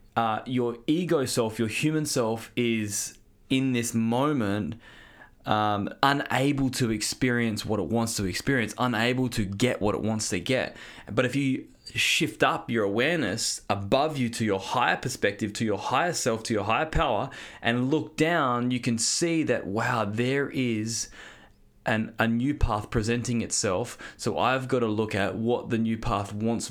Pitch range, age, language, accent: 105-125 Hz, 20-39, English, Australian